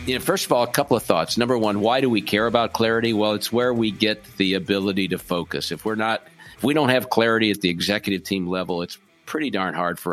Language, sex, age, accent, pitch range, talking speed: English, male, 50-69, American, 95-115 Hz, 235 wpm